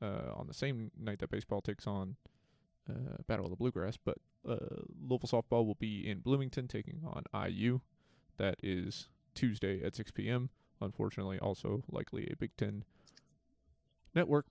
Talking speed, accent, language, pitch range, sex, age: 165 wpm, American, English, 105-130 Hz, male, 20-39